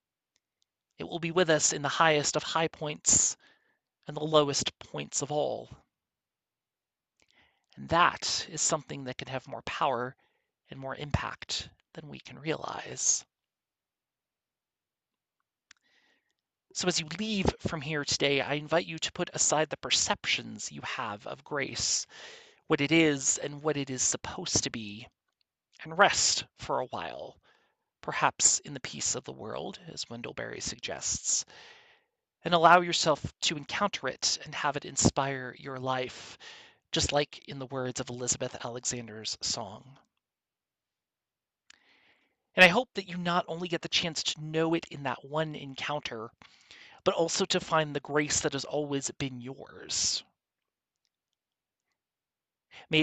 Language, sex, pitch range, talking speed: English, male, 130-165 Hz, 145 wpm